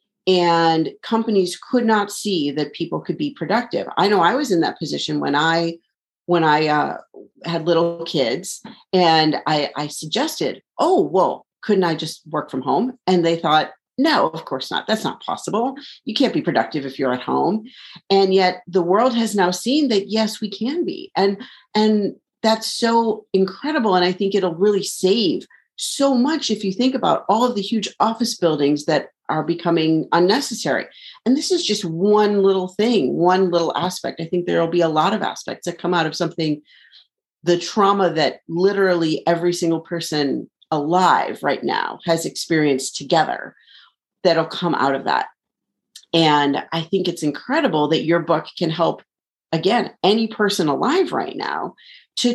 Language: English